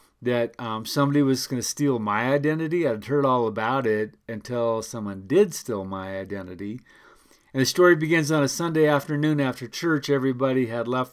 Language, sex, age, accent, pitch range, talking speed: English, male, 40-59, American, 115-150 Hz, 180 wpm